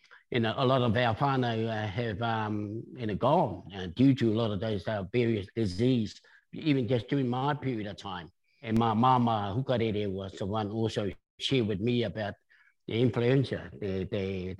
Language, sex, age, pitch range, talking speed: English, male, 60-79, 110-145 Hz, 190 wpm